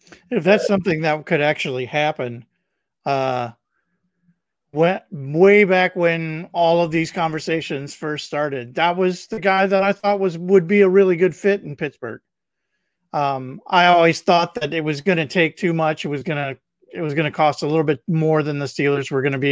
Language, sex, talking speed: English, male, 205 wpm